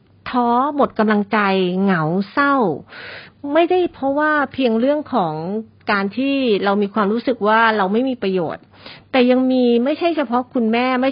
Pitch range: 205-265 Hz